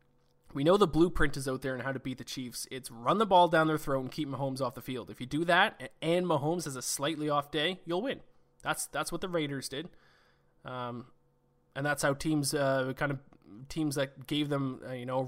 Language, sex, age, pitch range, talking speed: English, male, 20-39, 130-160 Hz, 240 wpm